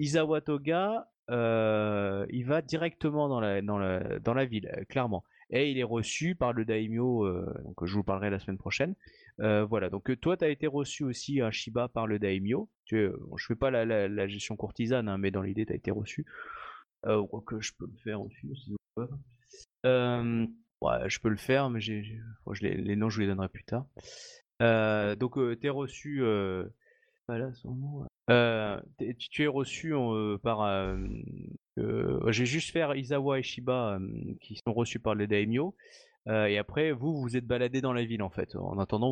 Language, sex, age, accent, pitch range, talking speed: French, male, 30-49, French, 105-130 Hz, 215 wpm